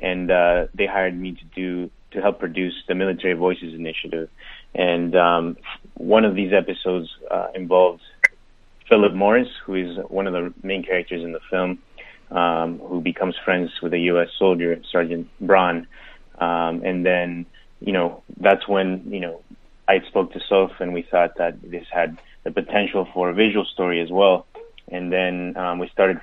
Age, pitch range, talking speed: 20-39, 85-95 Hz, 175 wpm